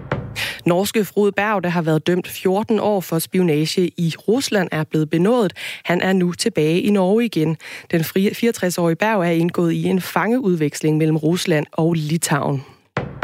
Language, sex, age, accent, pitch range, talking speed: Danish, female, 20-39, native, 165-200 Hz, 160 wpm